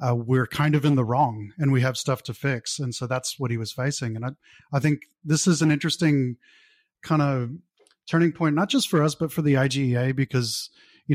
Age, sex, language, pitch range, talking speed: 30-49, male, English, 125-150 Hz, 240 wpm